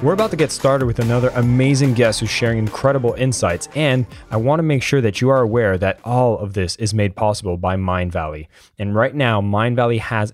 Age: 20-39